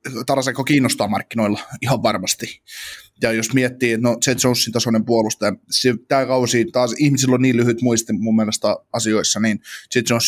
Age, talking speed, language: 20-39, 150 wpm, Finnish